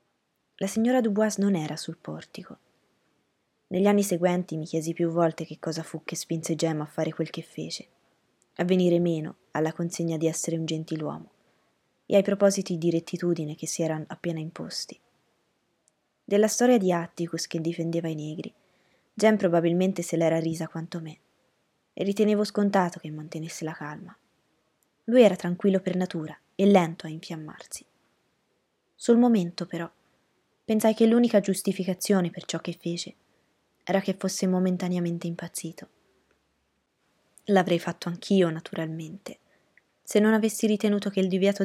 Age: 20-39